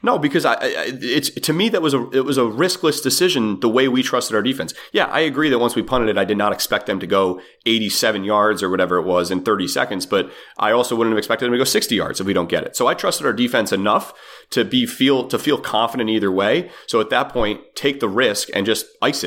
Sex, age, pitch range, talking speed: male, 30-49, 95-115 Hz, 265 wpm